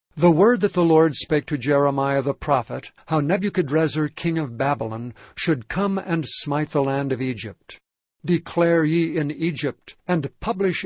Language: English